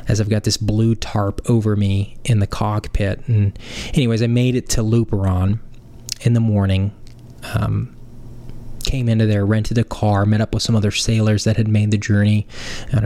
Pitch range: 105-120 Hz